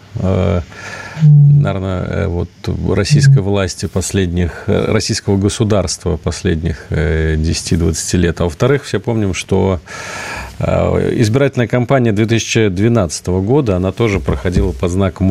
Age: 40-59